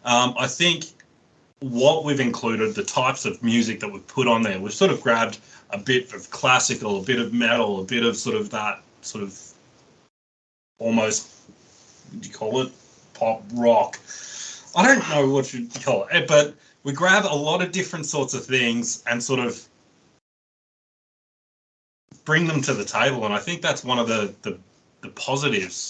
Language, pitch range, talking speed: English, 110-135 Hz, 180 wpm